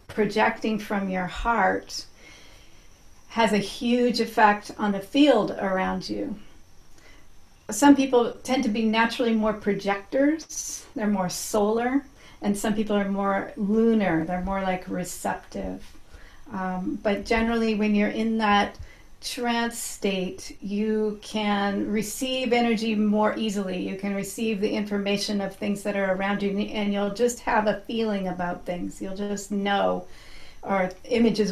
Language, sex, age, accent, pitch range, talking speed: English, female, 40-59, American, 190-220 Hz, 140 wpm